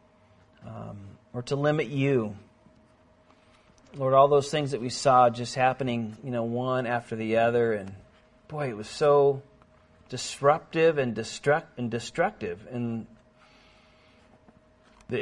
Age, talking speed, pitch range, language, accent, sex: 40-59, 125 wpm, 115-140 Hz, Finnish, American, male